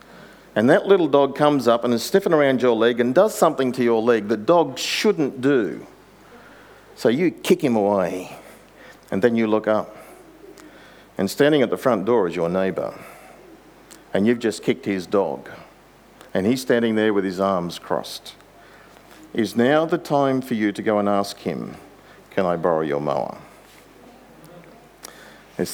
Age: 50-69